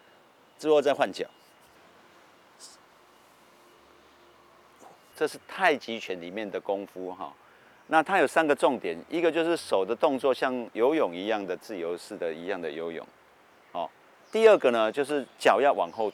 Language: Chinese